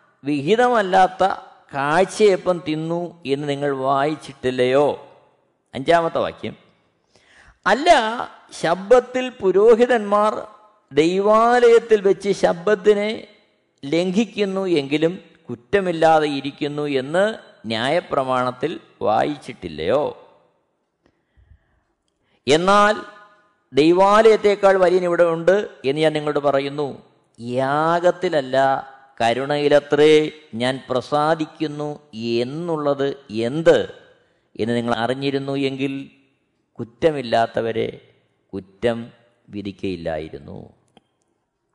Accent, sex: native, male